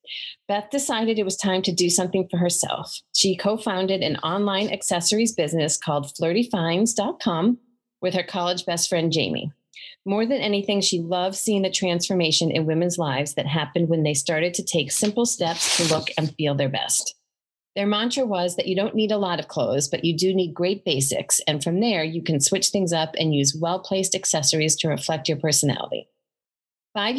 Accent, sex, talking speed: American, female, 190 wpm